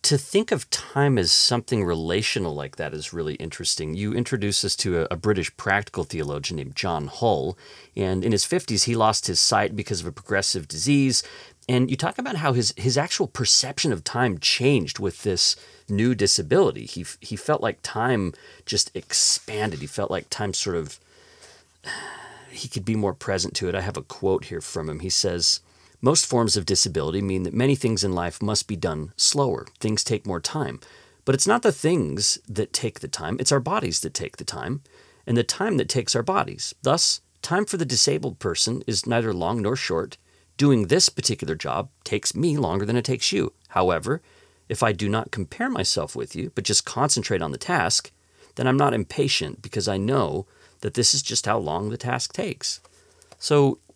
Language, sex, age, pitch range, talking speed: English, male, 30-49, 95-130 Hz, 195 wpm